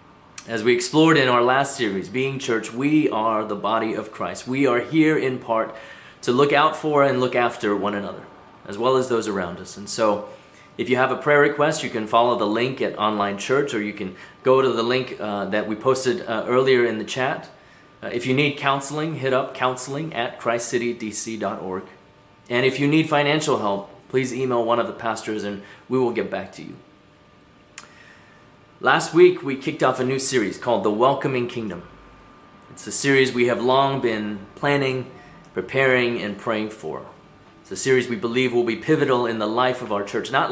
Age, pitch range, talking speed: 30-49, 110-140 Hz, 200 wpm